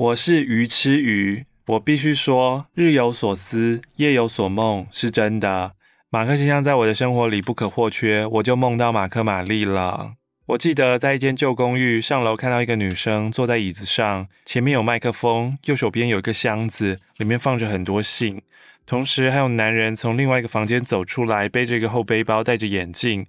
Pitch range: 105-135 Hz